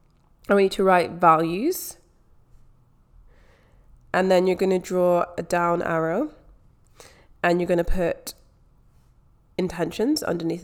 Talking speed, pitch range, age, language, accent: 105 wpm, 160-195 Hz, 20-39, English, British